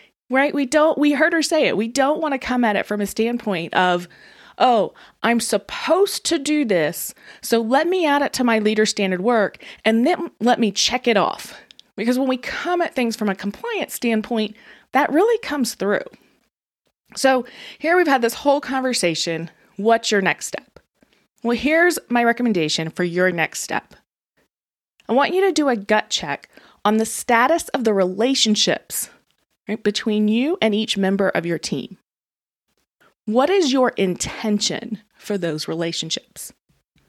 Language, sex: English, female